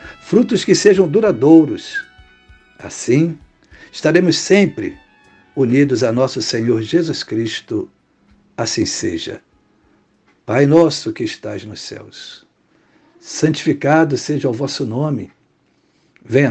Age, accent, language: 60-79, Brazilian, Portuguese